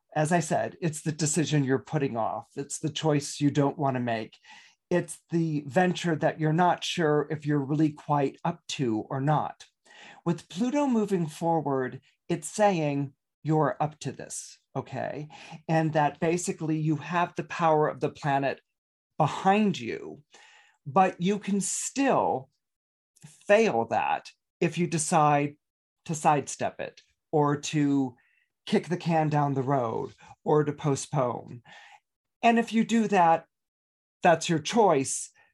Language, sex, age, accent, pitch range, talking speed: English, male, 40-59, American, 145-180 Hz, 145 wpm